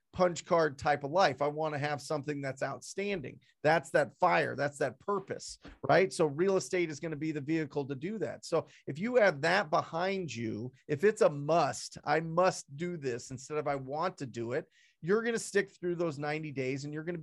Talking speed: 215 wpm